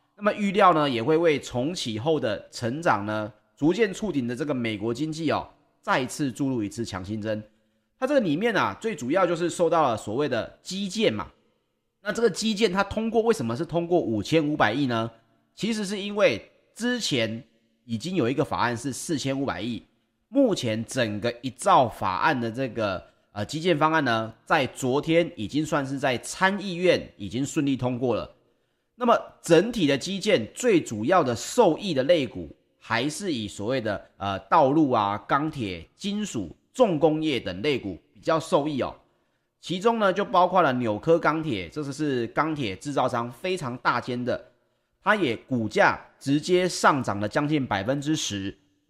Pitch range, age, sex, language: 115-175 Hz, 30-49, male, Chinese